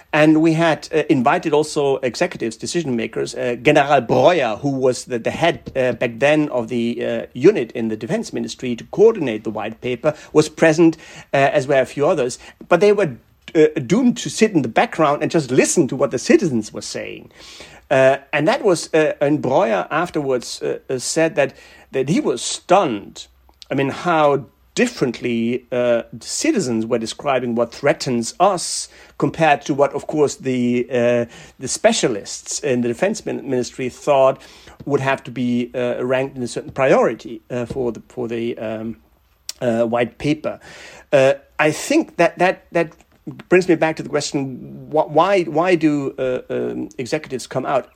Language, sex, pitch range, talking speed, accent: German, male, 120-160 Hz, 175 wpm, German